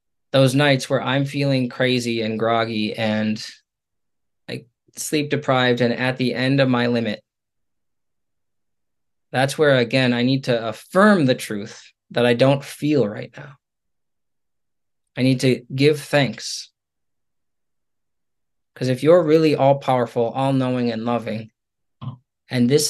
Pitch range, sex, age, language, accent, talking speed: 120-150 Hz, male, 20-39, English, American, 130 wpm